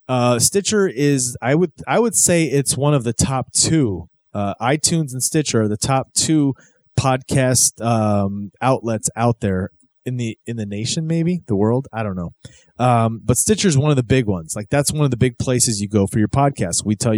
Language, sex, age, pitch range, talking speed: English, male, 30-49, 110-145 Hz, 215 wpm